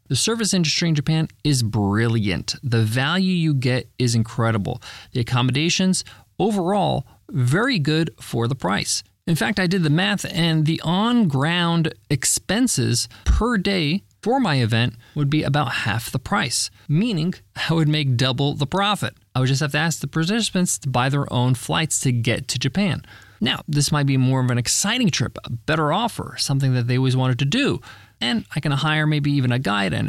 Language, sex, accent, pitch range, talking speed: English, male, American, 120-160 Hz, 185 wpm